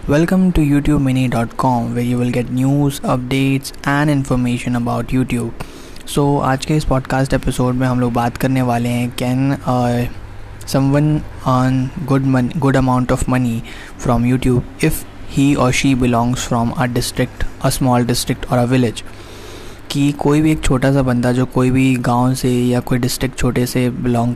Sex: male